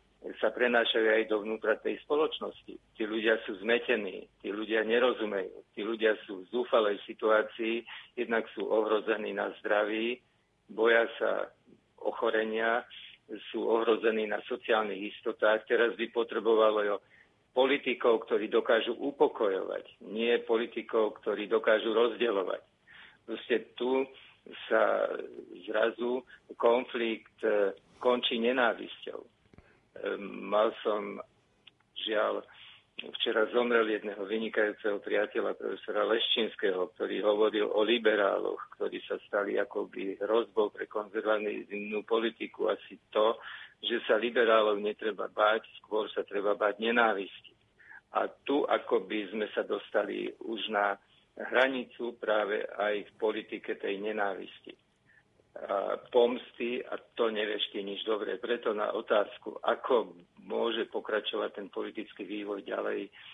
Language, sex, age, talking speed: Slovak, male, 50-69, 110 wpm